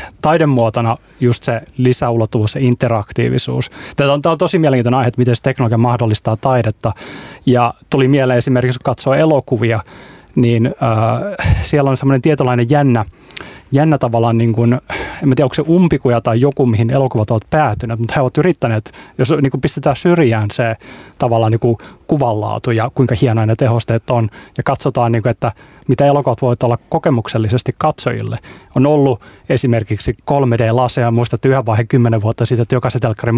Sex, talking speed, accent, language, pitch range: male, 160 wpm, native, Finnish, 115-140 Hz